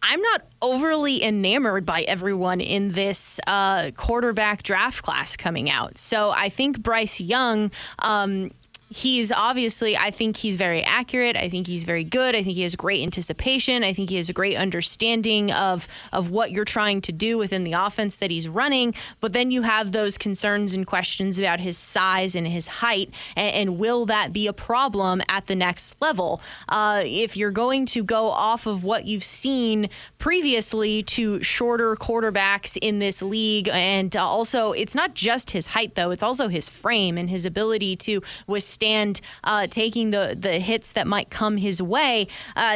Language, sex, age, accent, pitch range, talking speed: English, female, 20-39, American, 195-235 Hz, 180 wpm